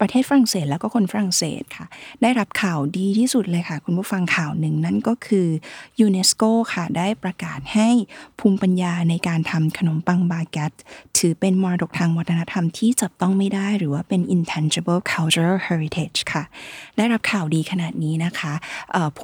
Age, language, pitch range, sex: 20-39, Thai, 160-215 Hz, female